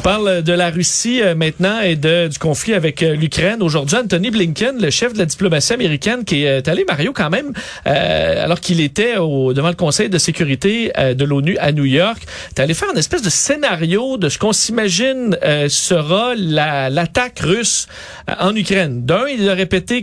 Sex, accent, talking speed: male, Canadian, 190 wpm